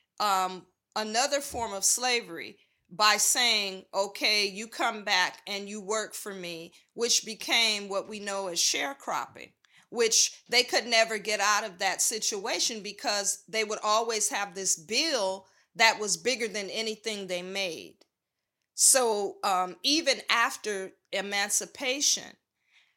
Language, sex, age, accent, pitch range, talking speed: English, female, 40-59, American, 190-230 Hz, 135 wpm